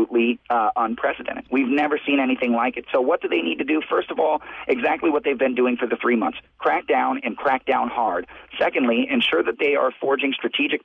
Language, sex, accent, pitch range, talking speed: English, male, American, 120-145 Hz, 220 wpm